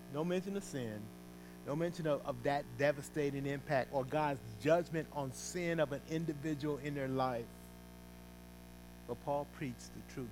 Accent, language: American, English